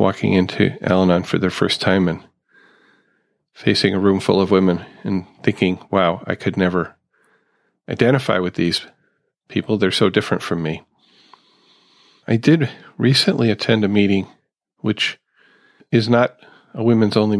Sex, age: male, 40-59